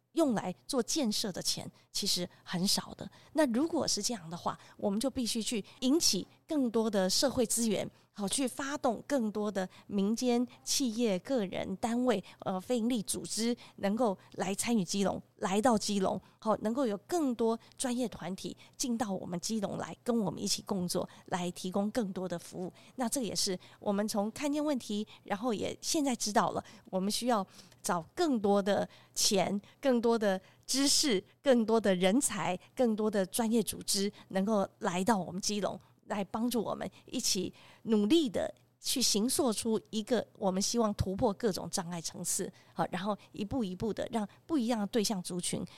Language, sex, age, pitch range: Chinese, female, 20-39, 190-245 Hz